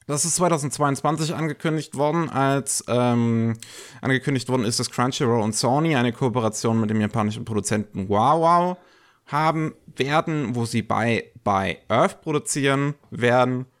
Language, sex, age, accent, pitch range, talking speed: German, male, 30-49, German, 105-135 Hz, 135 wpm